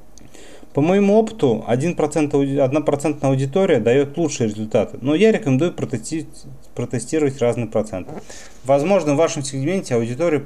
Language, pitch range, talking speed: Russian, 120-155 Hz, 115 wpm